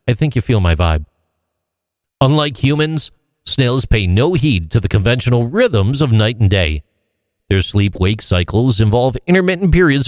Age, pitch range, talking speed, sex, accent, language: 50-69, 90-140 Hz, 160 wpm, male, American, English